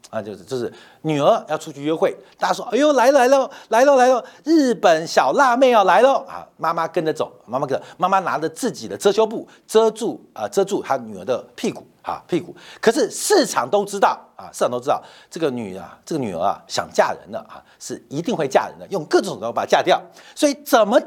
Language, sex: Chinese, male